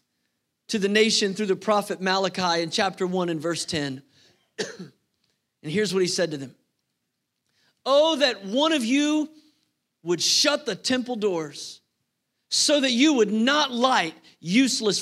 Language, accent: English, American